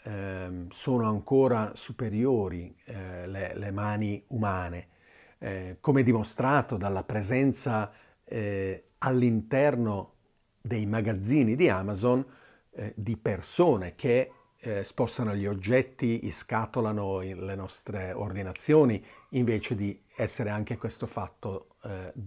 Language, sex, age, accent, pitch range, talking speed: Italian, male, 50-69, native, 100-125 Hz, 100 wpm